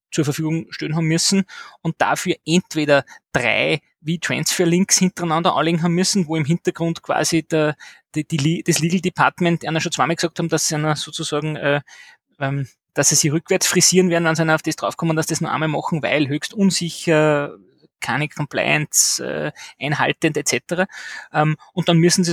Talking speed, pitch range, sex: 175 wpm, 145-165 Hz, male